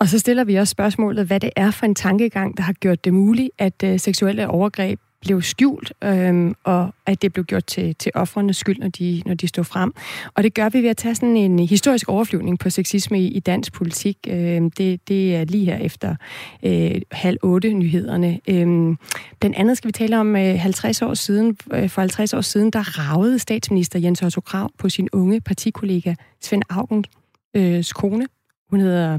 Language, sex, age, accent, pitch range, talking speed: Danish, female, 30-49, native, 180-220 Hz, 200 wpm